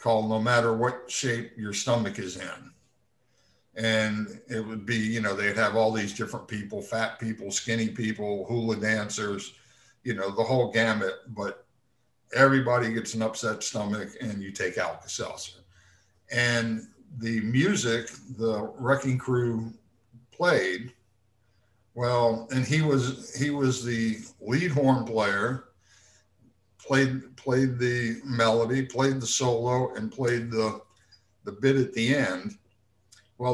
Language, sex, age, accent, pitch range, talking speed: English, male, 60-79, American, 105-130 Hz, 130 wpm